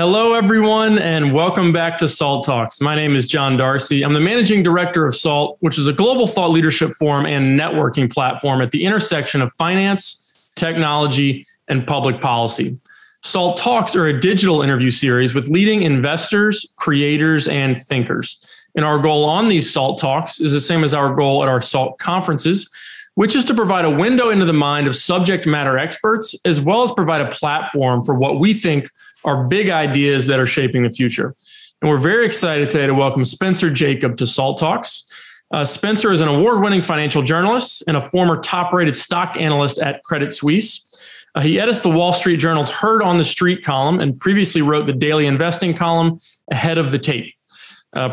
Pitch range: 140-180 Hz